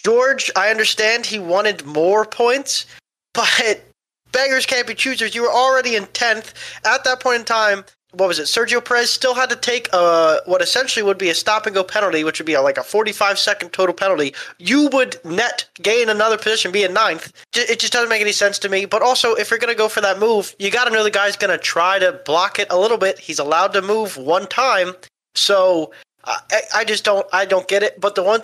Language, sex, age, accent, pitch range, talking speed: English, male, 20-39, American, 160-225 Hz, 230 wpm